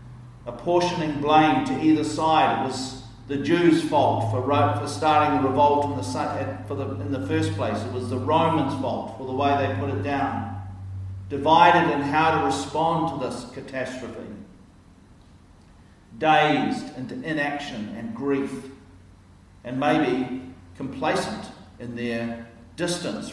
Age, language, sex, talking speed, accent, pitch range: 50-69, English, male, 125 wpm, Australian, 120-175 Hz